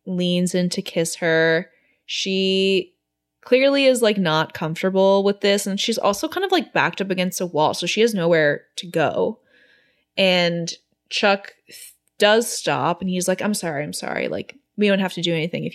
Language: English